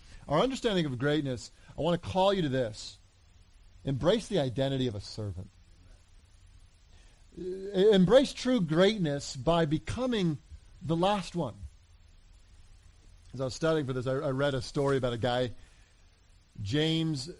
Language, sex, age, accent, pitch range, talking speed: English, male, 40-59, American, 100-155 Hz, 140 wpm